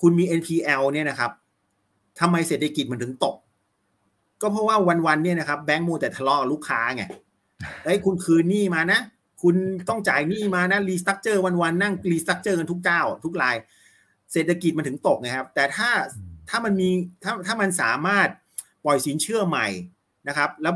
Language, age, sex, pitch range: Thai, 30-49, male, 130-185 Hz